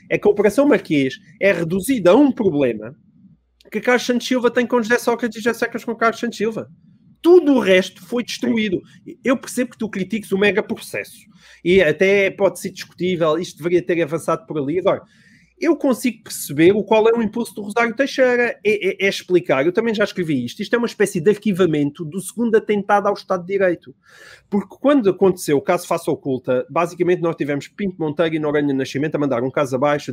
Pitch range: 175-235 Hz